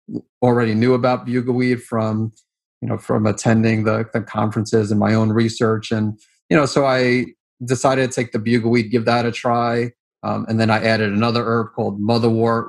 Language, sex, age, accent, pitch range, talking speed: English, male, 30-49, American, 110-125 Hz, 185 wpm